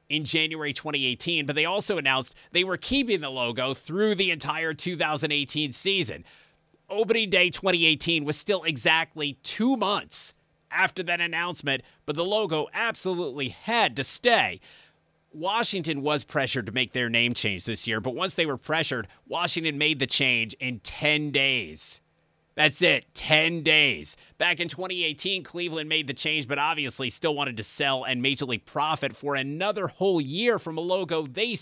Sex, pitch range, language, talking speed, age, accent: male, 135-190 Hz, English, 160 wpm, 30-49, American